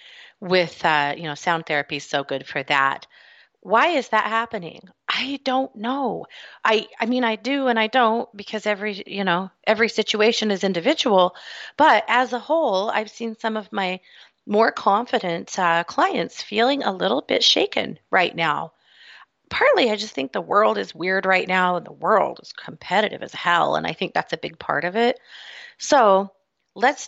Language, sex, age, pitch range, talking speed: English, female, 30-49, 170-240 Hz, 180 wpm